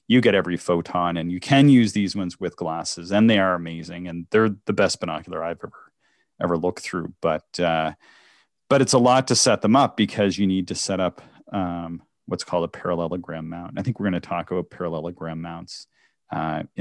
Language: English